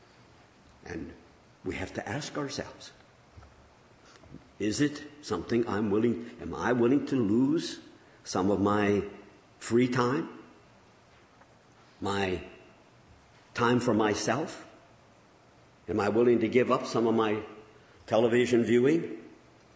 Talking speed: 110 wpm